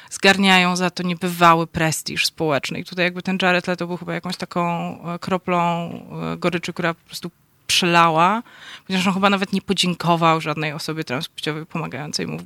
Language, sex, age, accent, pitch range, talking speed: Polish, female, 20-39, native, 160-190 Hz, 165 wpm